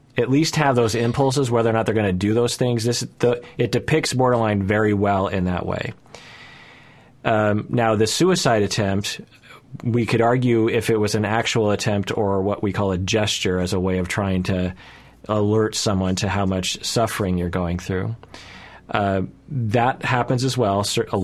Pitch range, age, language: 95-120 Hz, 30-49, English